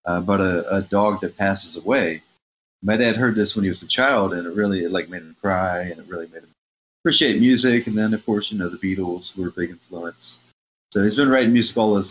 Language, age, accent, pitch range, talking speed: English, 30-49, American, 95-120 Hz, 255 wpm